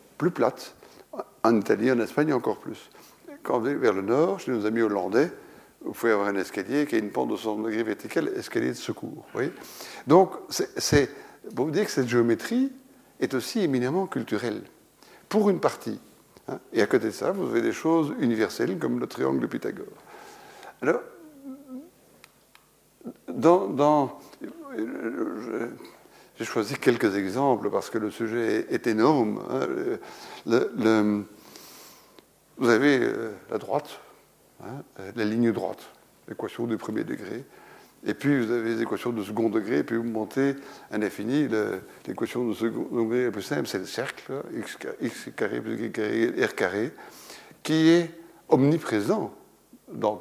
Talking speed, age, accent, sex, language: 155 wpm, 60-79, French, male, French